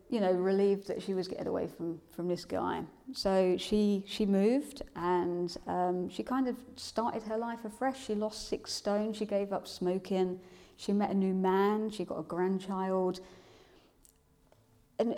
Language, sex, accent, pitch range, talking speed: English, female, British, 180-205 Hz, 170 wpm